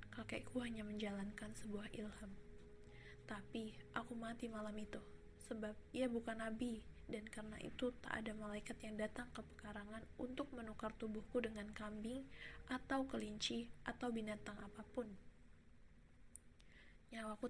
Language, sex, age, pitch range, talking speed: Indonesian, female, 20-39, 210-235 Hz, 120 wpm